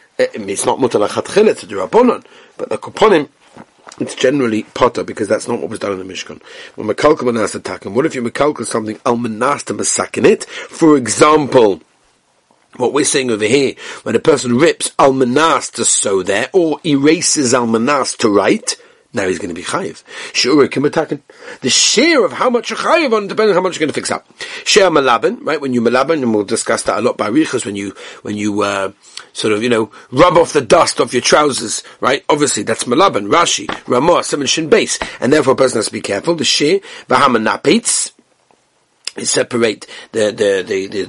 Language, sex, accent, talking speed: English, male, British, 185 wpm